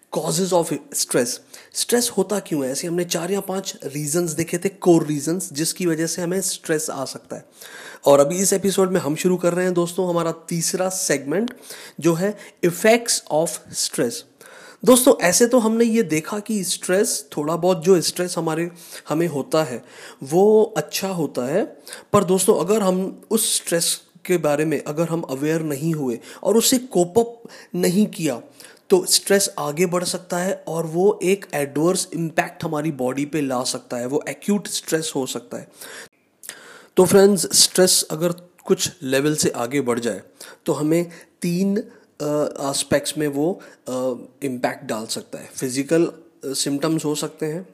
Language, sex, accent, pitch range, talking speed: Hindi, male, native, 155-195 Hz, 165 wpm